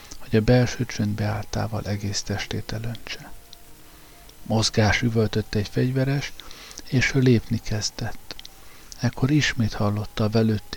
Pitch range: 105-120 Hz